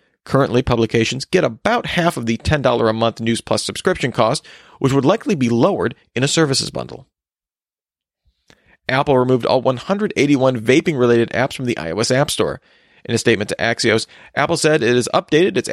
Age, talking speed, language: 40-59, 170 wpm, English